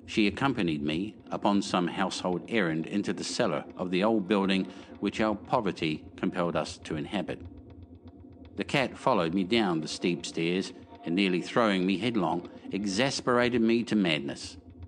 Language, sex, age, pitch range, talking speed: English, male, 60-79, 90-115 Hz, 155 wpm